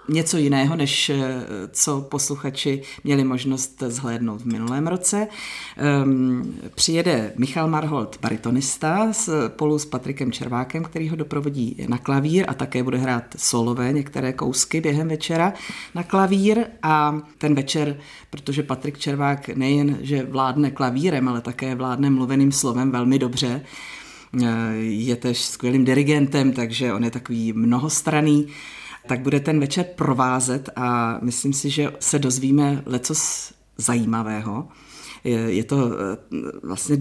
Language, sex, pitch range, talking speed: Czech, female, 125-150 Hz, 125 wpm